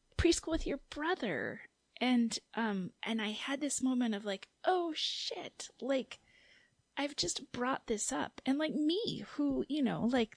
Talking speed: 160 wpm